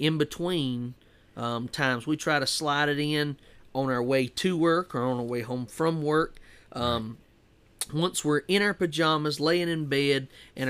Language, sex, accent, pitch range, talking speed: English, male, American, 130-160 Hz, 180 wpm